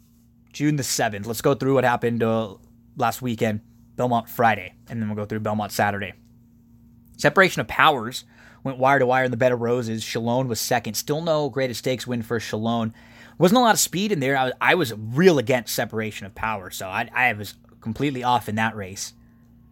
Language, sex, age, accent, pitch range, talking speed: English, male, 20-39, American, 115-135 Hz, 205 wpm